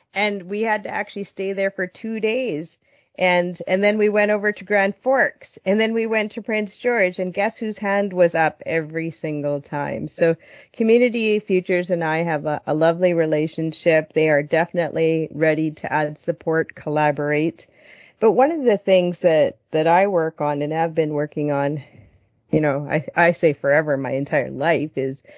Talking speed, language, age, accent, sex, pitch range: 185 wpm, English, 40-59, American, female, 150-185 Hz